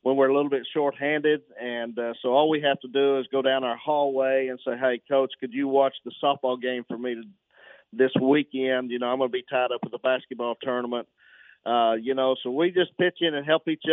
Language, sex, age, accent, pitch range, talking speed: English, male, 40-59, American, 120-145 Hz, 235 wpm